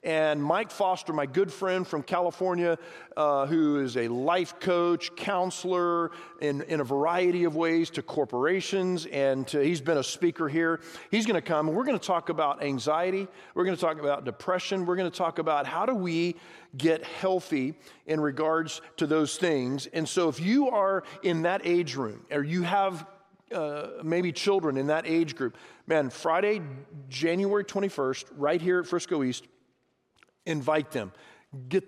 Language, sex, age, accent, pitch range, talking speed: English, male, 40-59, American, 145-180 Hz, 175 wpm